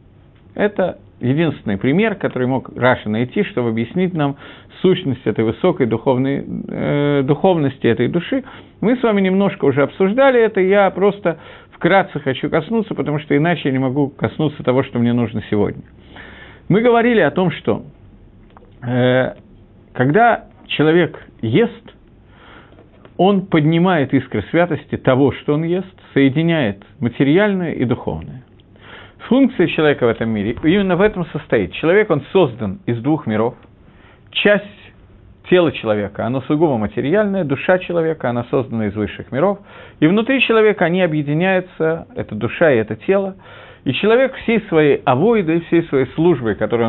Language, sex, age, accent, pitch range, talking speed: Russian, male, 50-69, native, 115-175 Hz, 140 wpm